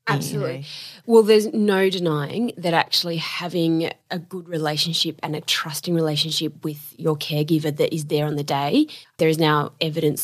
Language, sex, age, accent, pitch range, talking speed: English, female, 20-39, Australian, 160-190 Hz, 165 wpm